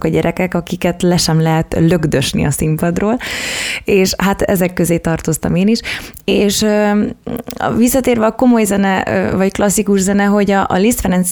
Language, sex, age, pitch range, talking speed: Hungarian, female, 20-39, 165-190 Hz, 145 wpm